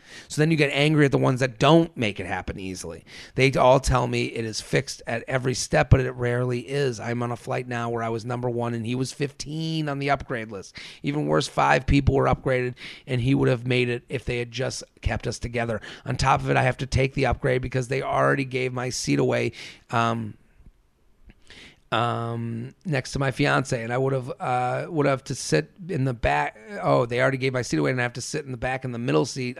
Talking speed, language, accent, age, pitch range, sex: 240 wpm, English, American, 30-49, 115-135 Hz, male